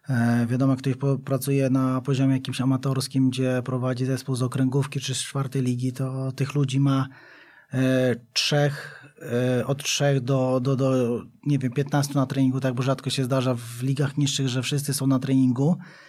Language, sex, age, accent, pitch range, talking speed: Polish, male, 20-39, native, 135-150 Hz, 155 wpm